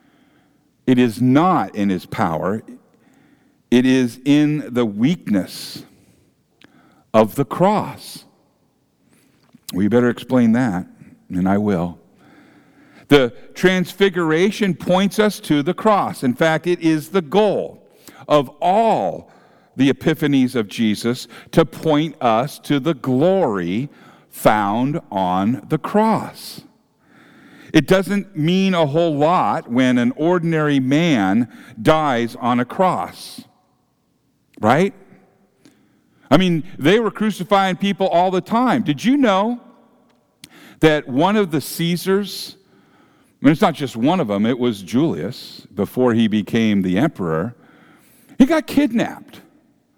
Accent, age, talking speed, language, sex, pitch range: American, 50-69, 120 wpm, English, male, 130-200 Hz